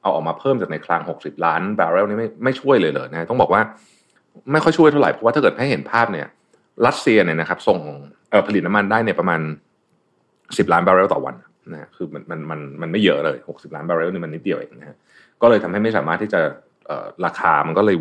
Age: 30-49